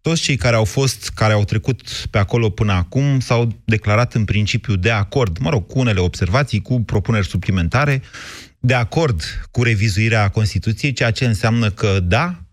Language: Romanian